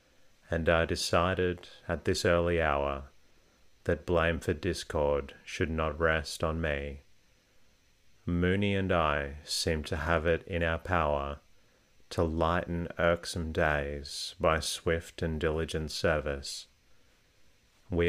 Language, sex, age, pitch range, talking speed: English, male, 30-49, 80-90 Hz, 120 wpm